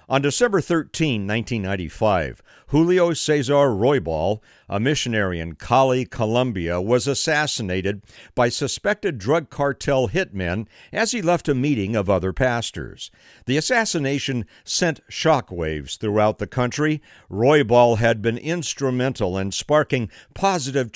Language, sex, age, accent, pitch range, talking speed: English, male, 60-79, American, 105-145 Hz, 115 wpm